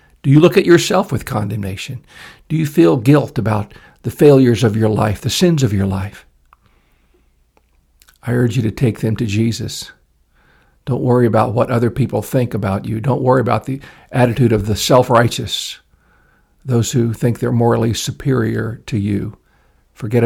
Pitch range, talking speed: 95-125 Hz, 165 wpm